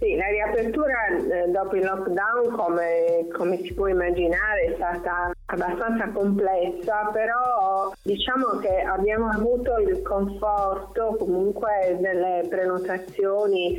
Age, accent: 30-49, native